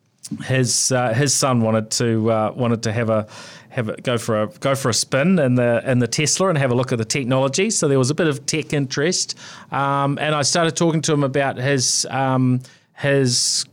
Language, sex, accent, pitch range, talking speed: English, male, Australian, 110-130 Hz, 225 wpm